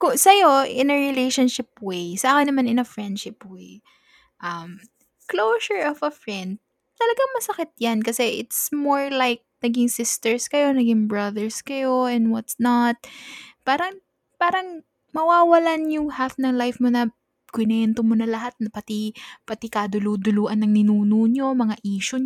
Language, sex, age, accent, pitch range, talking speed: Filipino, female, 10-29, native, 195-270 Hz, 145 wpm